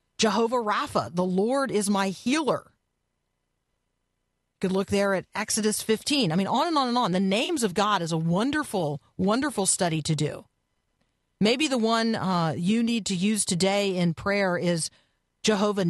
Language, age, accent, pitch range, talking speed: English, 40-59, American, 175-225 Hz, 165 wpm